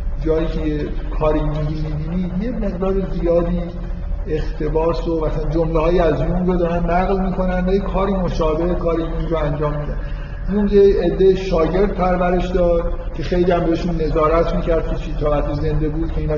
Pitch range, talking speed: 150-175 Hz, 170 wpm